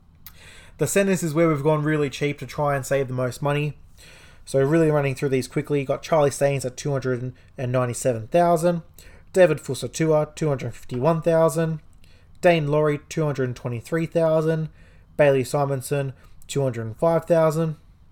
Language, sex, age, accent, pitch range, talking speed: English, male, 20-39, Australian, 130-155 Hz, 115 wpm